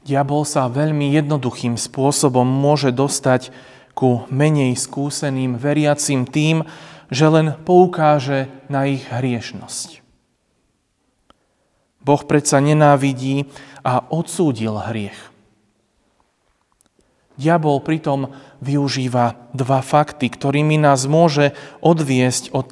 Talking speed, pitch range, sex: 90 wpm, 130-155 Hz, male